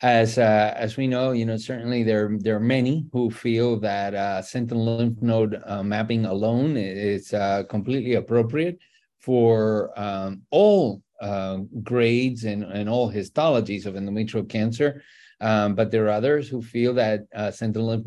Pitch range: 105-125 Hz